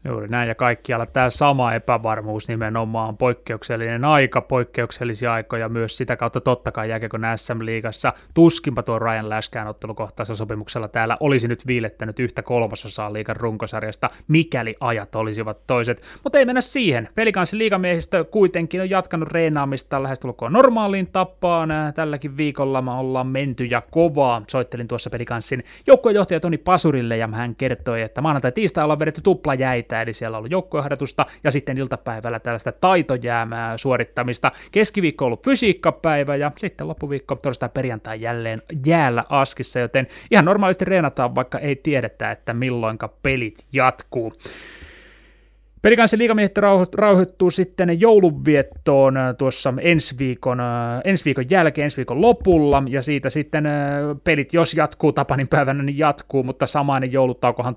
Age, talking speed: 20-39, 135 wpm